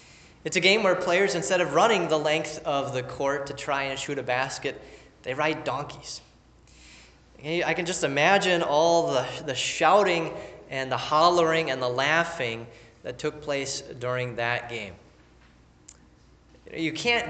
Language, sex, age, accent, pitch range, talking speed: English, male, 20-39, American, 125-165 Hz, 155 wpm